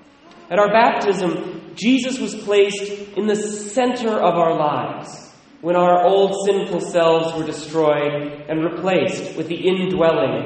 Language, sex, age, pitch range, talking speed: English, male, 30-49, 155-200 Hz, 140 wpm